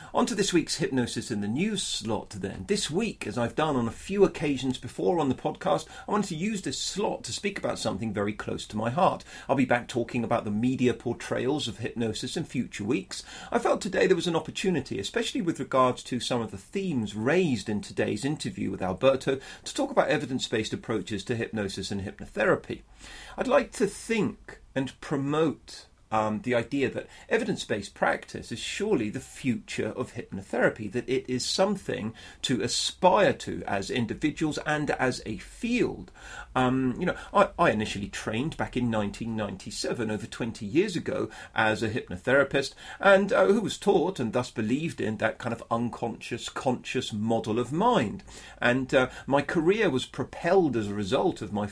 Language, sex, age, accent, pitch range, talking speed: English, male, 40-59, British, 110-155 Hz, 180 wpm